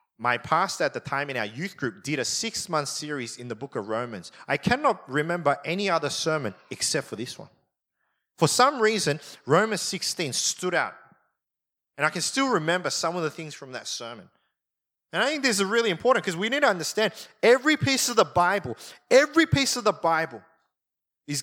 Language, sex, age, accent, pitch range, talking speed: English, male, 30-49, Australian, 140-200 Hz, 195 wpm